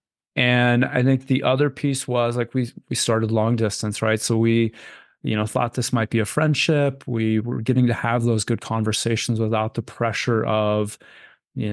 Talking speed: 190 wpm